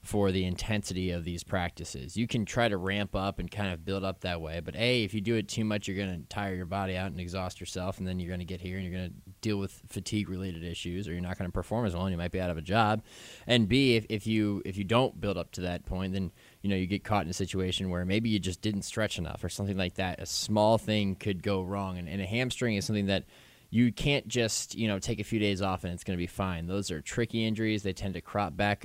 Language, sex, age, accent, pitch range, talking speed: English, male, 20-39, American, 95-110 Hz, 290 wpm